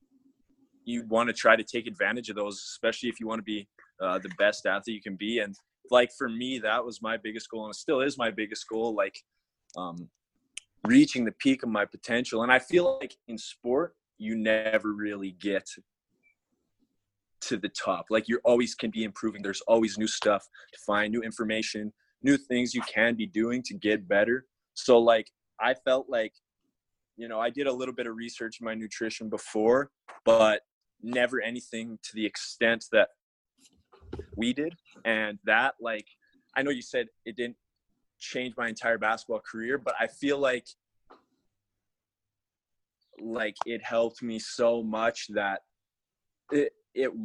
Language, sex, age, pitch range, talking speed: English, male, 20-39, 105-120 Hz, 175 wpm